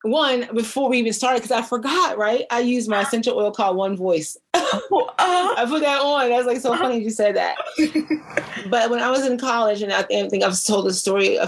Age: 30-49